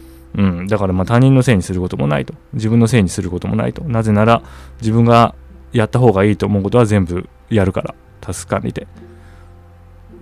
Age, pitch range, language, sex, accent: 20-39, 85-135 Hz, Japanese, male, native